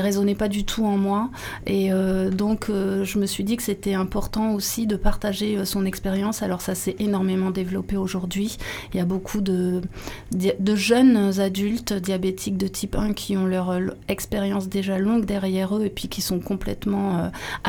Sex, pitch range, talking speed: female, 190-220 Hz, 185 wpm